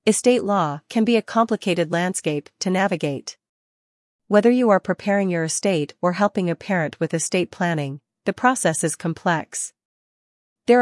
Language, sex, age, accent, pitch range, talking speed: English, female, 40-59, American, 160-200 Hz, 150 wpm